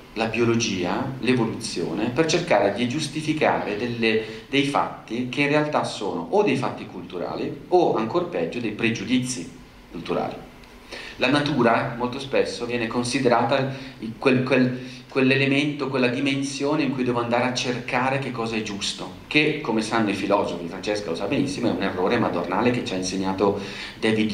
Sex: male